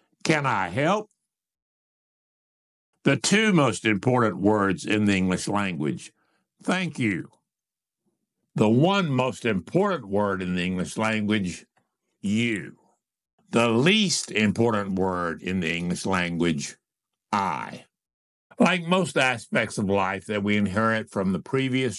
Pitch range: 95-135 Hz